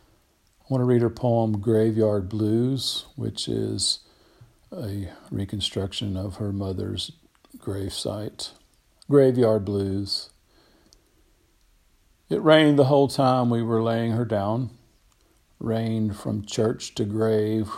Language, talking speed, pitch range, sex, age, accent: English, 110 wpm, 100-115 Hz, male, 50-69, American